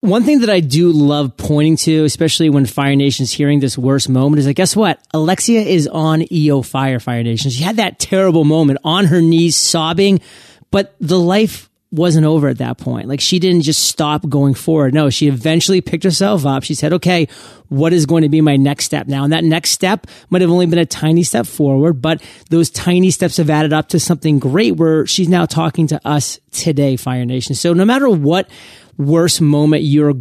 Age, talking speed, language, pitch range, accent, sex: 30-49, 215 wpm, English, 140-175 Hz, American, male